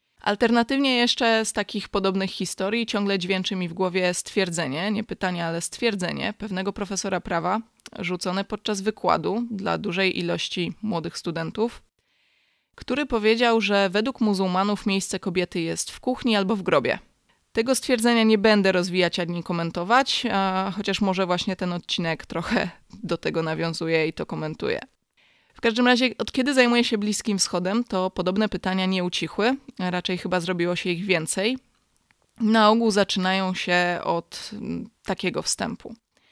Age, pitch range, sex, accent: 20-39, 180-225 Hz, female, native